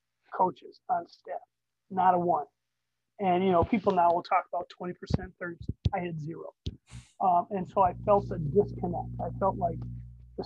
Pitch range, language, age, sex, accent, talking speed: 170-200 Hz, English, 40-59, male, American, 170 wpm